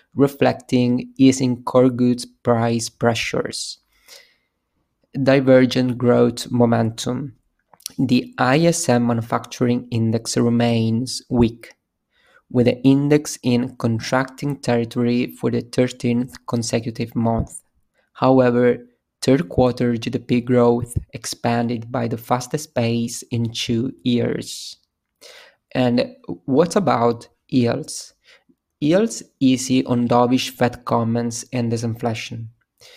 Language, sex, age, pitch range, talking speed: English, male, 20-39, 115-130 Hz, 95 wpm